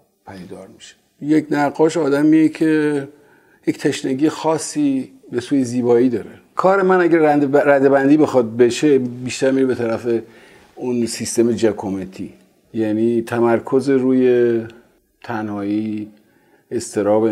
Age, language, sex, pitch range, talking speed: 50-69, Persian, male, 110-155 Hz, 105 wpm